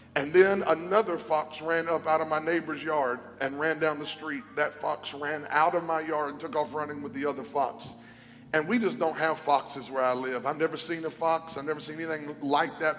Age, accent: 50-69, American